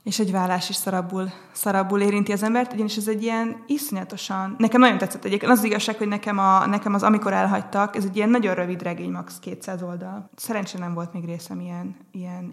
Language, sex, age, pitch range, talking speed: Hungarian, female, 20-39, 180-210 Hz, 200 wpm